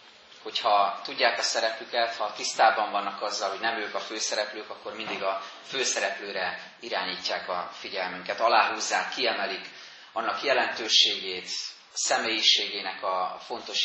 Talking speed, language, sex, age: 120 wpm, Hungarian, male, 30-49